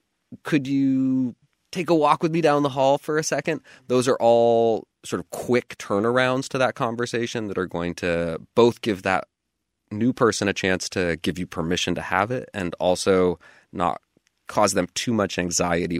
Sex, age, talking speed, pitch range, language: male, 20-39, 185 wpm, 90-115 Hz, English